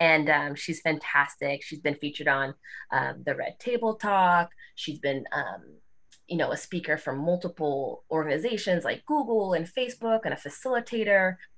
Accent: American